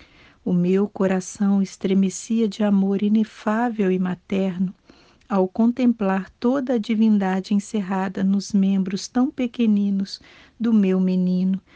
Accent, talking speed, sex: Brazilian, 110 wpm, female